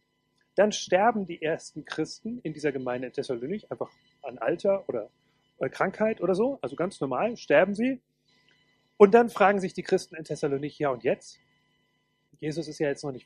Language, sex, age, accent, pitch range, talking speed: German, male, 30-49, German, 145-195 Hz, 175 wpm